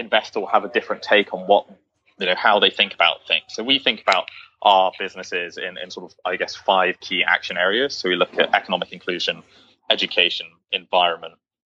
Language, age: English, 20-39